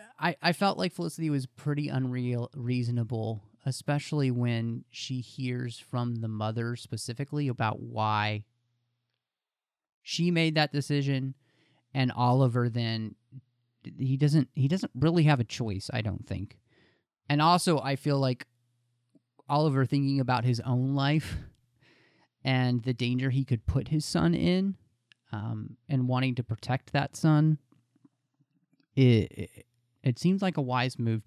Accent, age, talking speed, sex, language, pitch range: American, 30-49, 140 wpm, male, English, 115-140 Hz